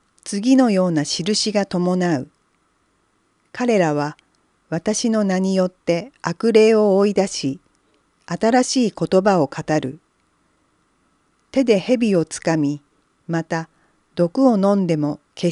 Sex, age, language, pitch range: female, 40-59, Japanese, 150-215 Hz